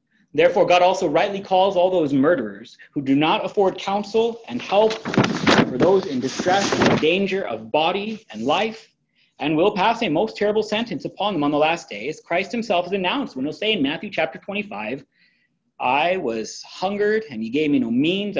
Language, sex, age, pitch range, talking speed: English, male, 30-49, 150-225 Hz, 190 wpm